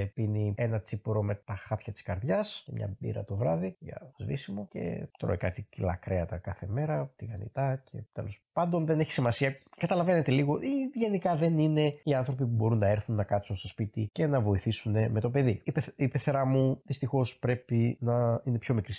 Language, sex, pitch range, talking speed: Greek, male, 110-155 Hz, 190 wpm